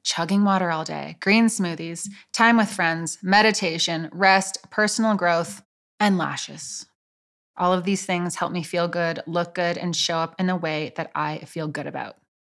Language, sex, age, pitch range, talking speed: English, female, 20-39, 170-215 Hz, 175 wpm